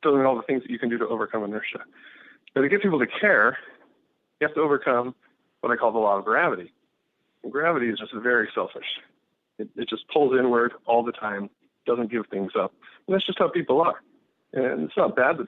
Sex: male